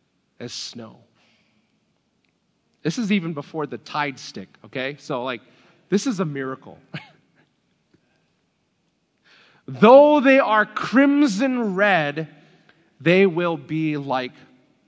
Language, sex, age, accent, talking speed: English, male, 40-59, American, 100 wpm